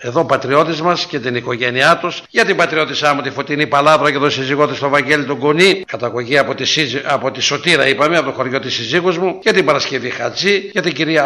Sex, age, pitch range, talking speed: male, 60-79, 140-175 Hz, 225 wpm